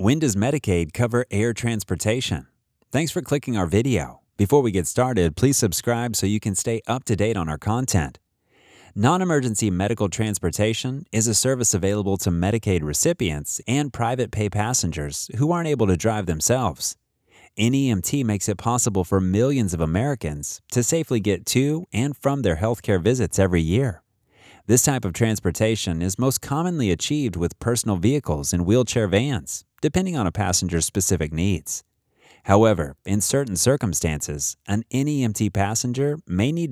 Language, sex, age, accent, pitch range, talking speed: English, male, 30-49, American, 90-125 Hz, 155 wpm